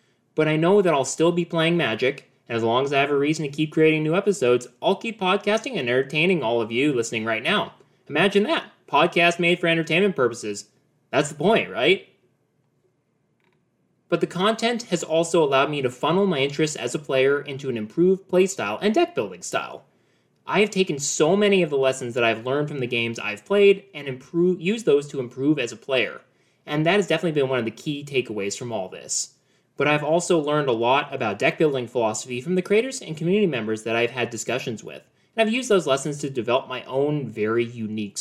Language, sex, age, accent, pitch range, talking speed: English, male, 20-39, American, 125-180 Hz, 210 wpm